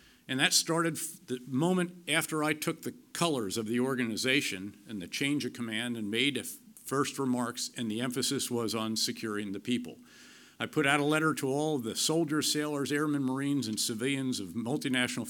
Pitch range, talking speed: 110-145 Hz, 180 wpm